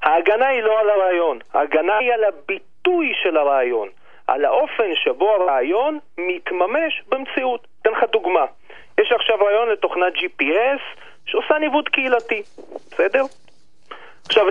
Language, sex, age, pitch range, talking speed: Hebrew, male, 40-59, 205-335 Hz, 125 wpm